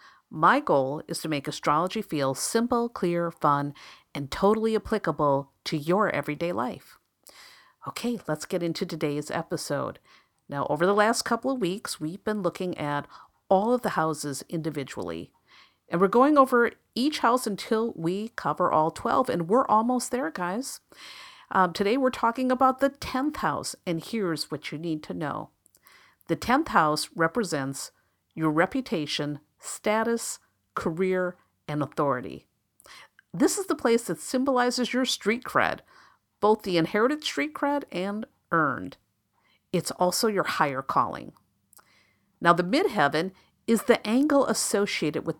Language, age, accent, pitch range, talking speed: English, 50-69, American, 155-230 Hz, 145 wpm